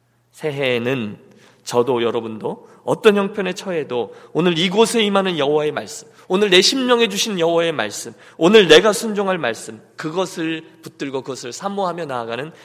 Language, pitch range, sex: Korean, 125-190 Hz, male